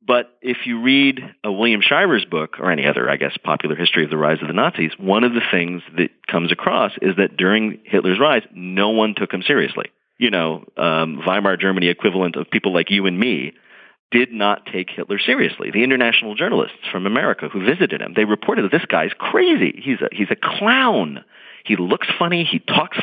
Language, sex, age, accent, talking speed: English, male, 40-59, American, 205 wpm